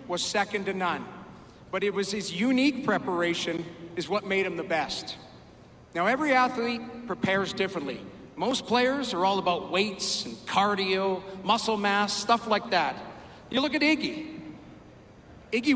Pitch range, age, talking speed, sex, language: 185-245 Hz, 50-69, 150 wpm, male, English